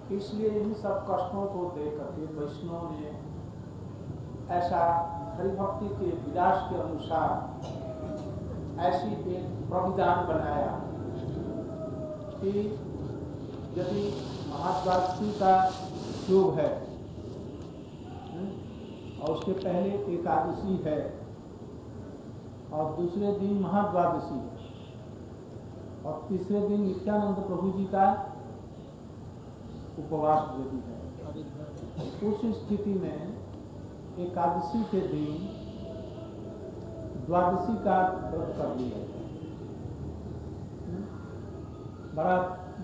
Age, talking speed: 60-79, 75 wpm